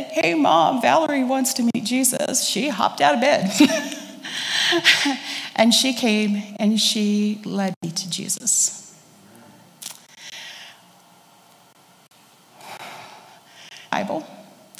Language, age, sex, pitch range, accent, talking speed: English, 30-49, female, 220-290 Hz, American, 90 wpm